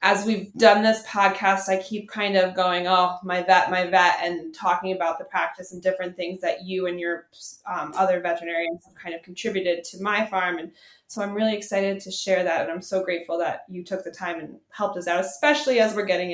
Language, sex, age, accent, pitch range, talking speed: English, female, 20-39, American, 185-275 Hz, 230 wpm